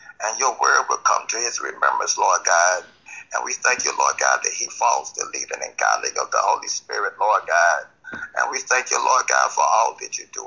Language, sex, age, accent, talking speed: English, male, 60-79, American, 230 wpm